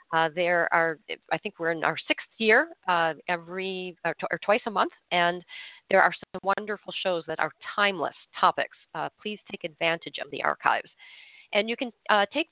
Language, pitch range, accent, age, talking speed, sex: English, 165-215 Hz, American, 40-59, 185 wpm, female